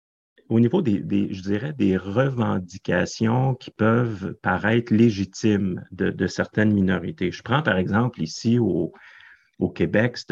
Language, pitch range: French, 95-120 Hz